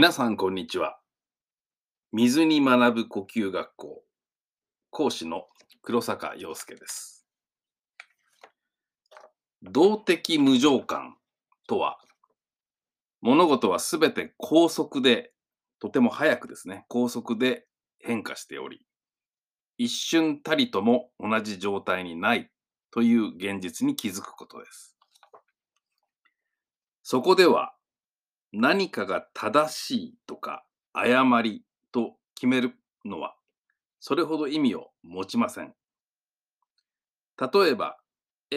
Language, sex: Japanese, male